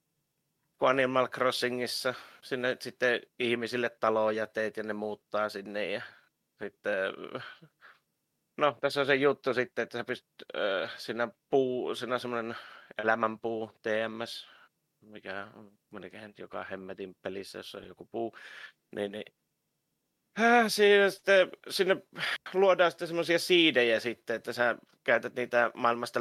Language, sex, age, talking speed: Finnish, male, 30-49, 120 wpm